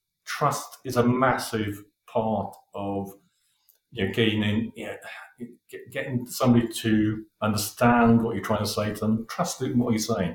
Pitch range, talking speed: 105-125 Hz, 155 wpm